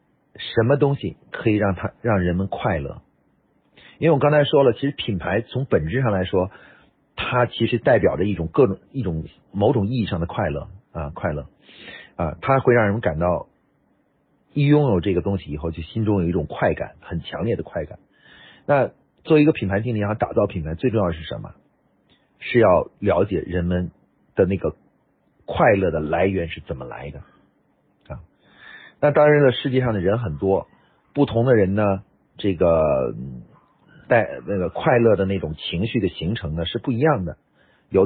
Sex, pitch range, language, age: male, 90-125 Hz, Chinese, 50-69